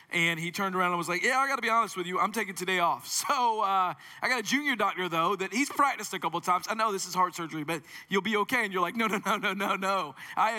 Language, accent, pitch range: English, American, 155-205 Hz